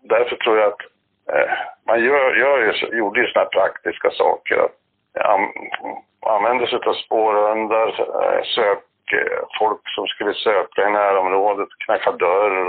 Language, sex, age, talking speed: English, male, 60-79, 140 wpm